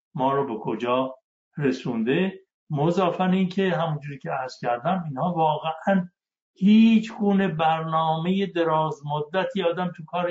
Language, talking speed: Persian, 120 wpm